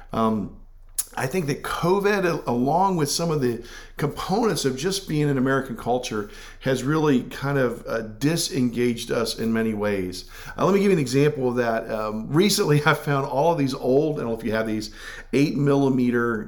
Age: 50-69